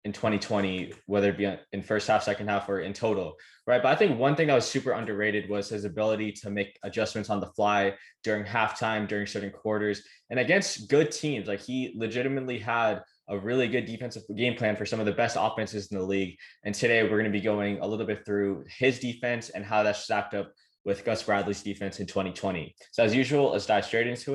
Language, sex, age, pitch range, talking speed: English, male, 20-39, 100-125 Hz, 225 wpm